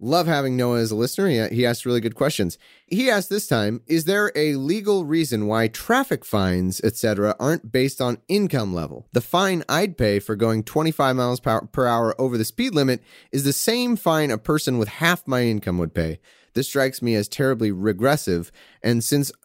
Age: 30-49